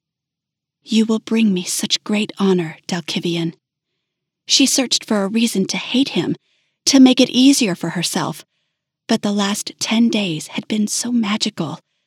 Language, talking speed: English, 155 wpm